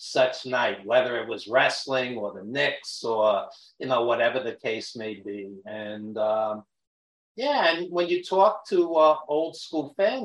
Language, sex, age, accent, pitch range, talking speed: English, male, 50-69, American, 120-160 Hz, 170 wpm